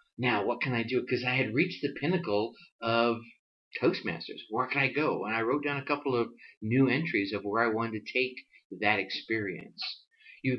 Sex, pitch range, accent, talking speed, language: male, 115-145 Hz, American, 200 wpm, English